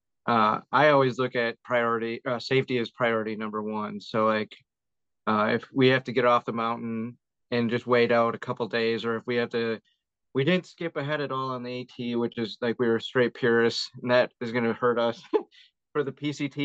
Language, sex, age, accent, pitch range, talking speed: English, male, 30-49, American, 110-125 Hz, 215 wpm